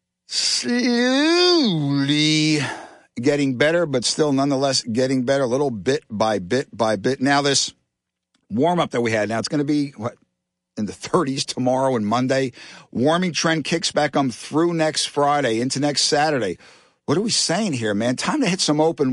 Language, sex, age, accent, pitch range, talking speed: English, male, 50-69, American, 130-170 Hz, 175 wpm